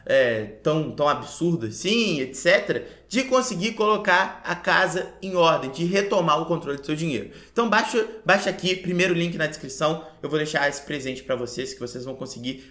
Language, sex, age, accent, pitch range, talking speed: Portuguese, male, 20-39, Brazilian, 155-210 Hz, 180 wpm